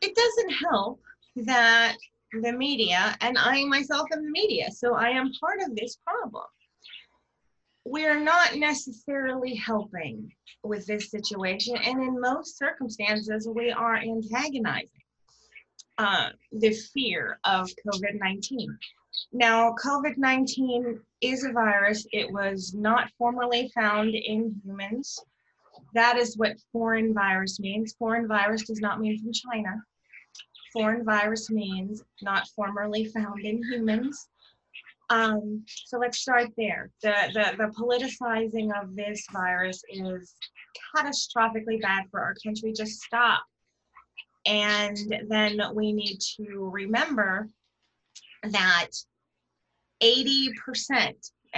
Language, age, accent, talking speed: English, 30-49, American, 115 wpm